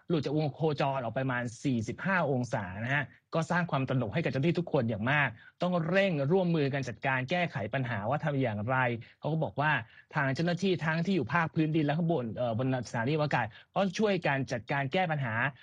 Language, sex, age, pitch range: Thai, male, 20-39, 130-175 Hz